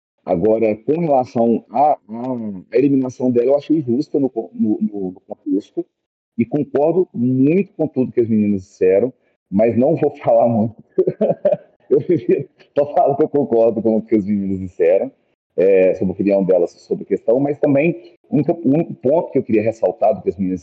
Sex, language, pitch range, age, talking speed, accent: male, Portuguese, 110-145 Hz, 40-59, 185 wpm, Brazilian